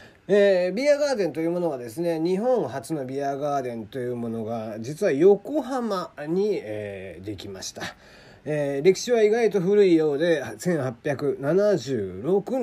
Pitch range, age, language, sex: 120-195 Hz, 40-59, Japanese, male